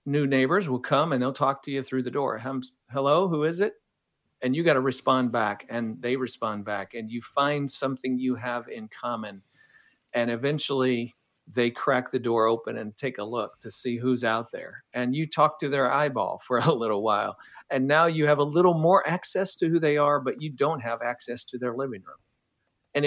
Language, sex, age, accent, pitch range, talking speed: English, male, 50-69, American, 120-145 Hz, 215 wpm